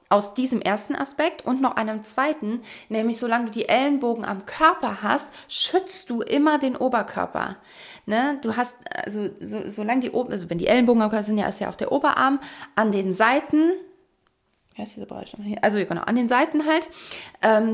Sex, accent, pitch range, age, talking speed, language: female, German, 210-260 Hz, 20-39, 175 wpm, German